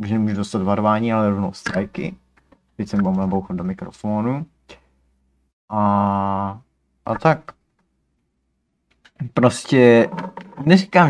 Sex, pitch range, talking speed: male, 100-130 Hz, 90 wpm